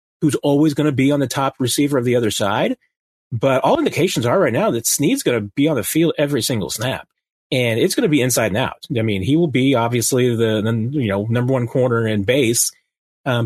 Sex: male